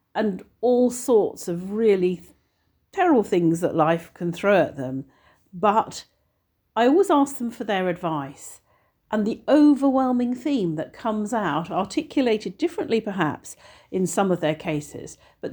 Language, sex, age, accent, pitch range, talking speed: English, female, 50-69, British, 155-210 Hz, 145 wpm